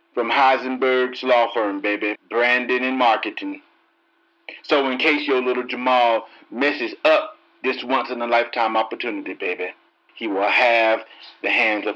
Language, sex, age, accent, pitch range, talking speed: English, male, 40-59, American, 115-180 Hz, 130 wpm